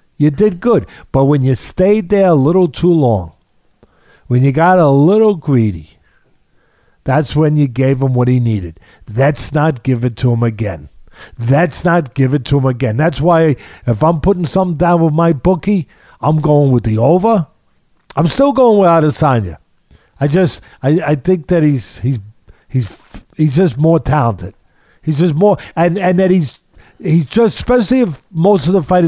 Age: 50-69